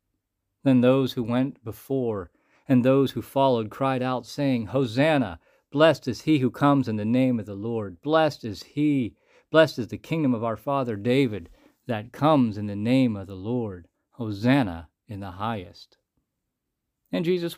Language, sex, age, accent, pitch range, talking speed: English, male, 50-69, American, 105-140 Hz, 165 wpm